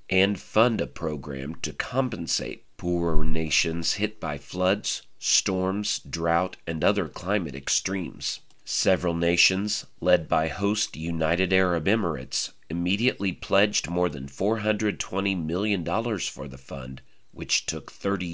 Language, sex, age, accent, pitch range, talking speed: English, male, 40-59, American, 75-95 Hz, 120 wpm